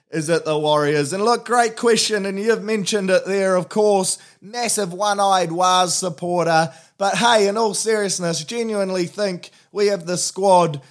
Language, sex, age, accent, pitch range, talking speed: English, male, 20-39, Australian, 155-195 Hz, 170 wpm